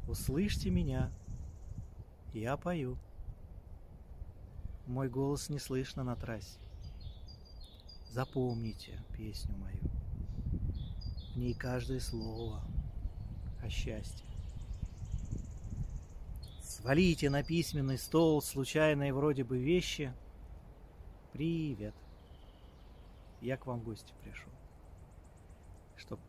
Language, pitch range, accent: Russian, 85-130 Hz, native